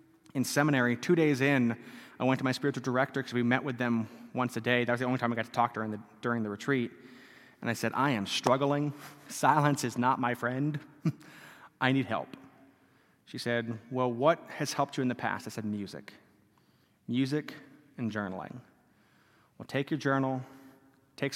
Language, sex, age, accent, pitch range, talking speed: English, male, 30-49, American, 120-150 Hz, 195 wpm